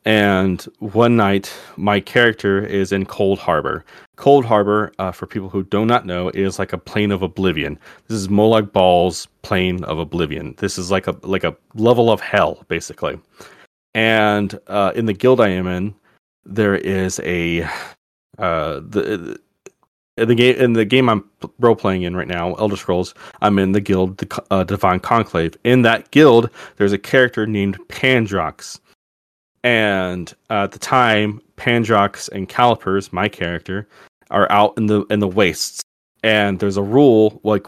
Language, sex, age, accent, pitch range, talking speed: English, male, 30-49, American, 95-110 Hz, 165 wpm